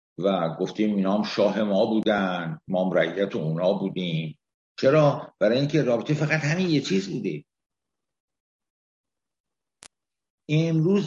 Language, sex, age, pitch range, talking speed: Persian, male, 60-79, 120-155 Hz, 110 wpm